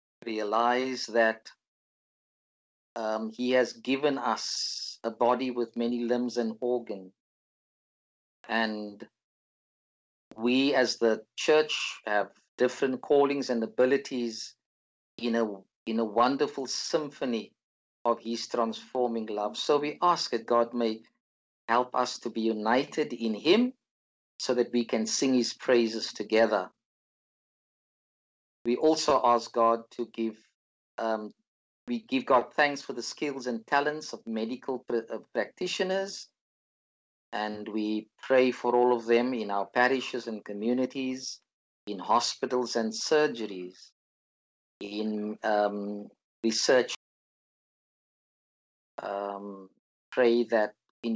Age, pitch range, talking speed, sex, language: 50-69, 110-125 Hz, 115 wpm, male, English